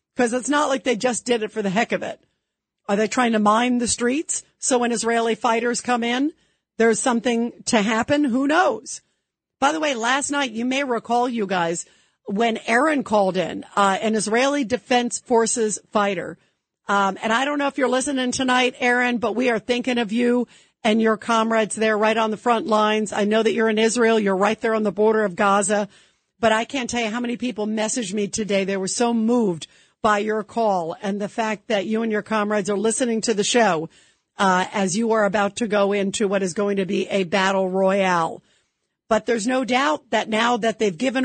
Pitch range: 210-245 Hz